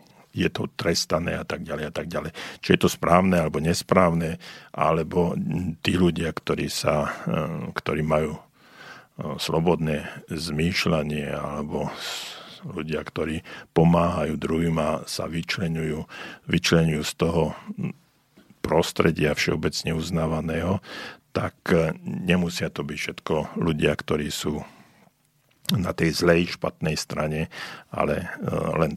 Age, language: 50-69, Slovak